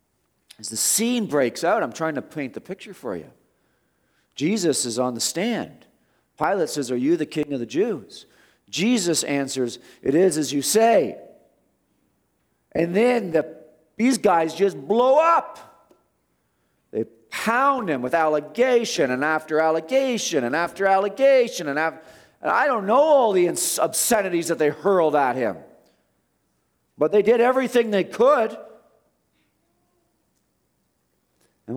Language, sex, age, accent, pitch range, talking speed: English, male, 40-59, American, 115-170 Hz, 135 wpm